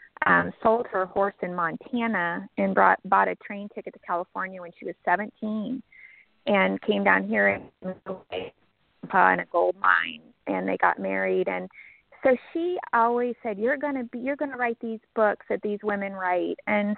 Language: English